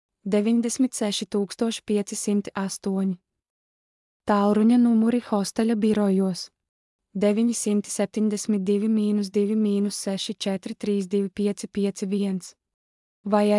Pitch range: 195-210 Hz